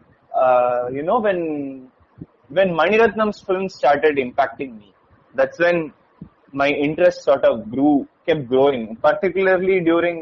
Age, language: 30-49, Tamil